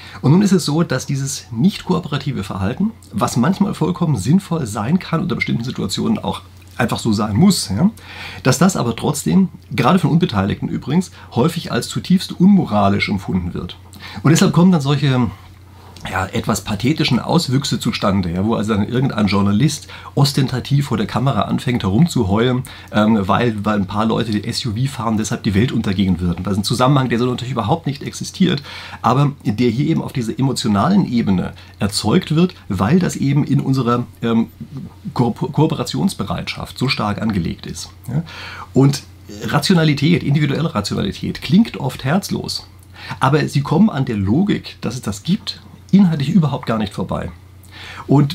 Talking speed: 165 wpm